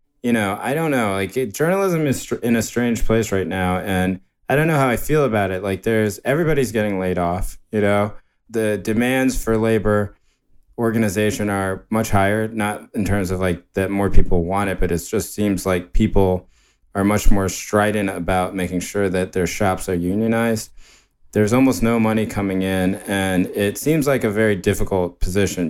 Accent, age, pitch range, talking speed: American, 20-39, 90-110 Hz, 195 wpm